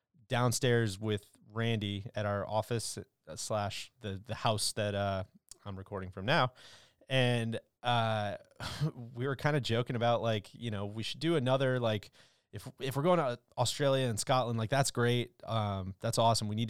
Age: 20-39